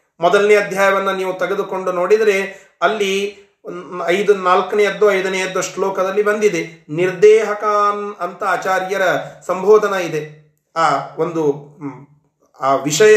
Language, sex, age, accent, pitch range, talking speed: Kannada, male, 30-49, native, 185-235 Hz, 90 wpm